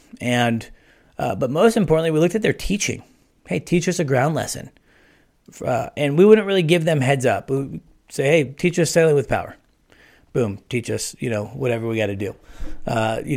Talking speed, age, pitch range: 205 wpm, 40-59, 120-150 Hz